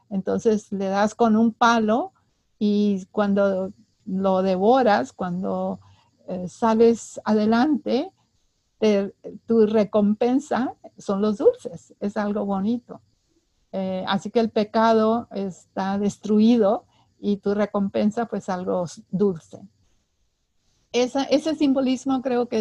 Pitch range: 200-235 Hz